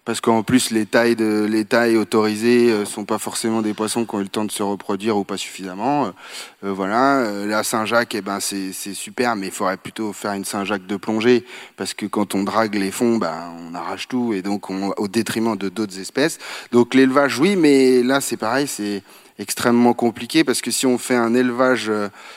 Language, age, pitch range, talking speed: French, 30-49, 105-130 Hz, 215 wpm